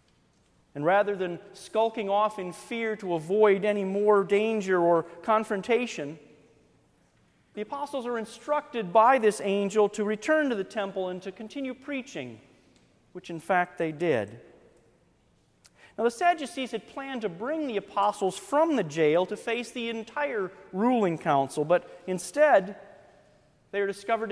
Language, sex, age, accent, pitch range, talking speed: English, male, 40-59, American, 195-255 Hz, 145 wpm